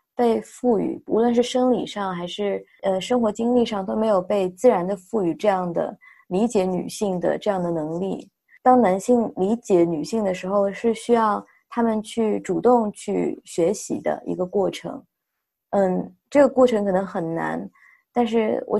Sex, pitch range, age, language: female, 190-235 Hz, 20-39, Chinese